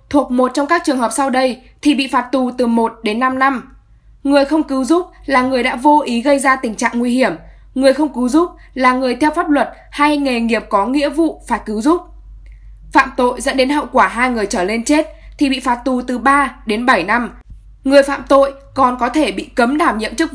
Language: Vietnamese